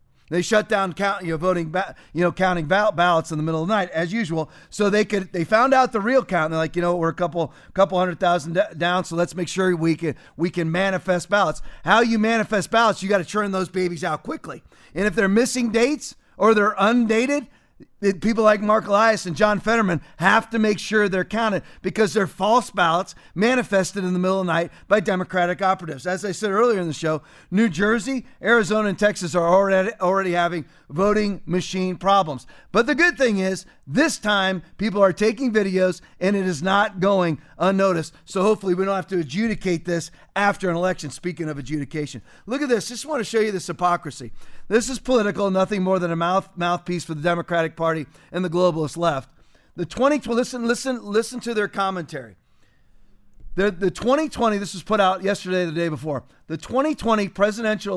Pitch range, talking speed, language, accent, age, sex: 175-215 Hz, 205 wpm, English, American, 40-59, male